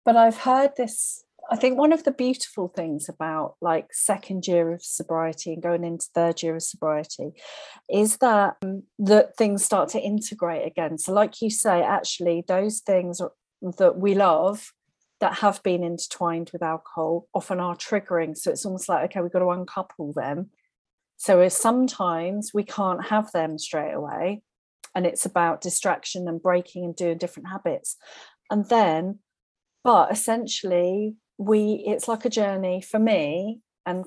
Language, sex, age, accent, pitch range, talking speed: English, female, 40-59, British, 175-215 Hz, 165 wpm